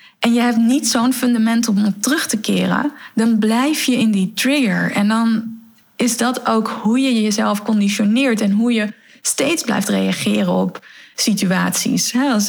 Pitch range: 185-230 Hz